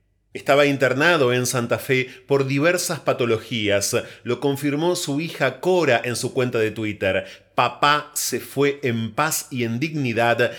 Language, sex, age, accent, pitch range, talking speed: Spanish, male, 30-49, Argentinian, 115-155 Hz, 145 wpm